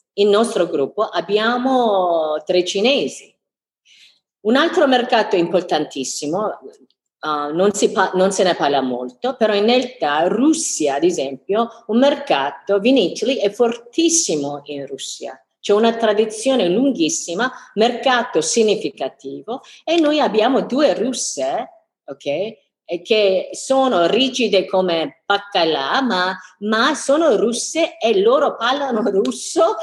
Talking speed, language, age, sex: 105 wpm, Italian, 50-69, female